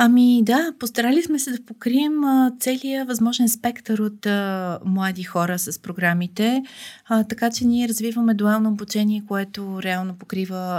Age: 30-49